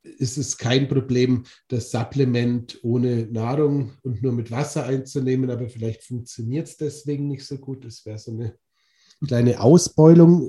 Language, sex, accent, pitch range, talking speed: German, male, German, 120-135 Hz, 155 wpm